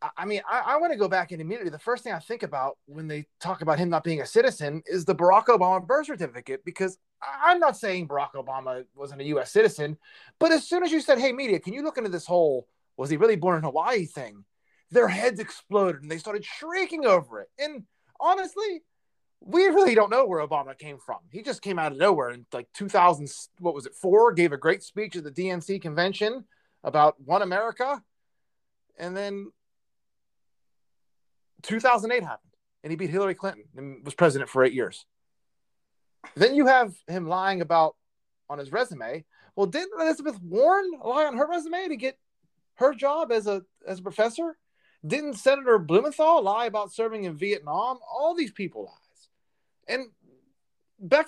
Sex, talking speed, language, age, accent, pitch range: male, 190 wpm, English, 30-49, American, 165-275 Hz